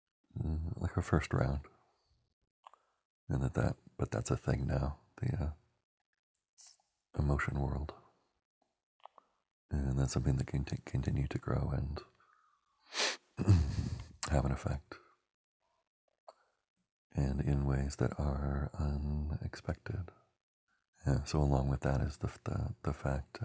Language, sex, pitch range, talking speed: English, male, 70-90 Hz, 115 wpm